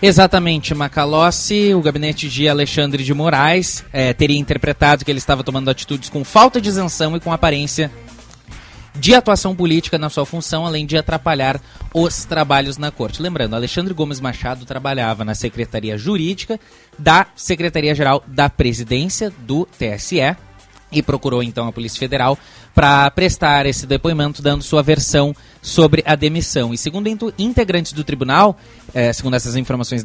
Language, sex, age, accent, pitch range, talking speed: Portuguese, male, 20-39, Brazilian, 135-185 Hz, 150 wpm